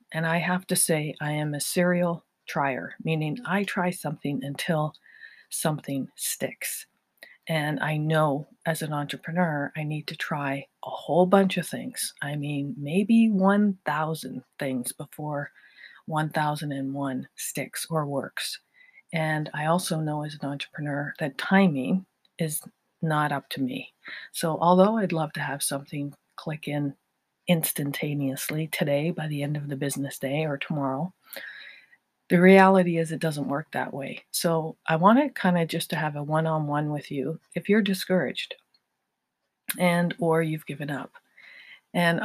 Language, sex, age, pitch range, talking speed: English, female, 40-59, 145-180 Hz, 150 wpm